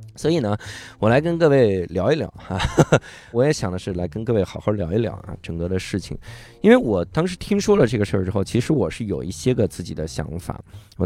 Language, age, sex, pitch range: Chinese, 20-39, male, 85-120 Hz